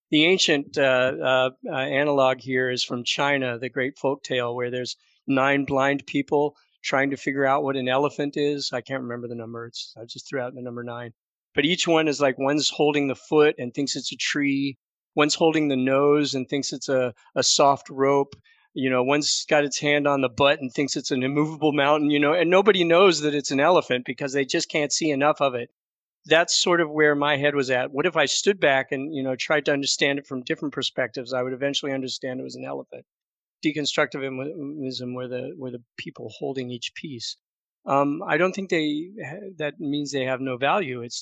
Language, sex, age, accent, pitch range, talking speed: English, male, 40-59, American, 130-150 Hz, 215 wpm